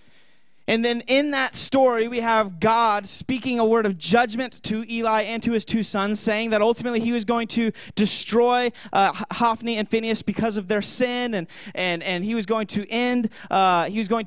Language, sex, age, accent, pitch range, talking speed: English, male, 20-39, American, 175-225 Hz, 200 wpm